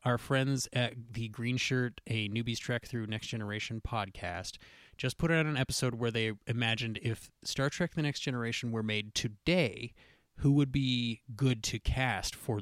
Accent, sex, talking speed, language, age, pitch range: American, male, 175 wpm, English, 30-49, 105-135 Hz